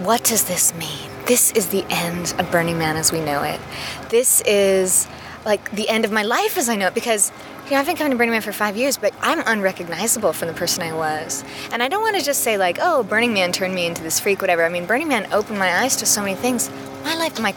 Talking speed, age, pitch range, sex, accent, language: 260 wpm, 20-39, 180-245 Hz, female, American, English